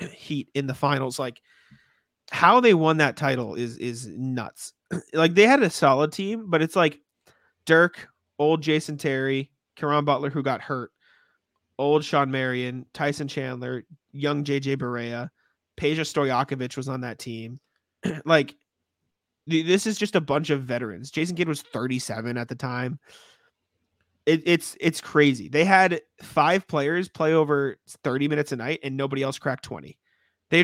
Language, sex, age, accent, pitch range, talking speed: English, male, 30-49, American, 130-160 Hz, 155 wpm